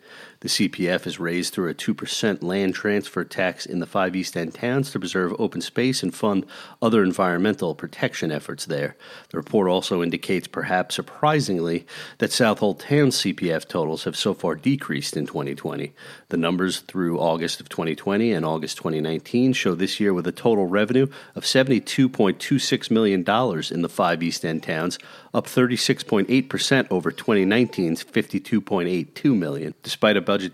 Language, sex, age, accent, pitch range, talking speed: English, male, 40-59, American, 90-125 Hz, 155 wpm